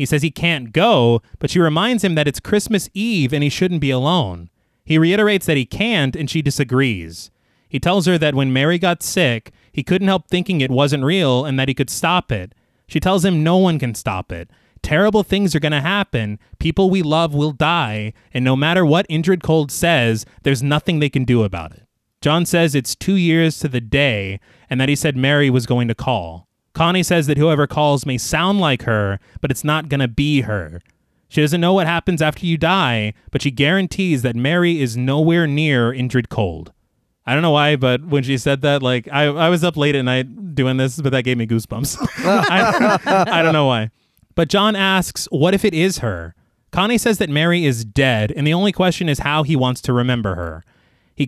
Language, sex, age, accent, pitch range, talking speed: English, male, 30-49, American, 125-170 Hz, 220 wpm